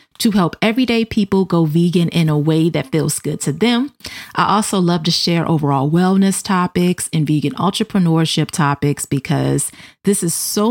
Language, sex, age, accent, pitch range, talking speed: English, female, 30-49, American, 160-205 Hz, 170 wpm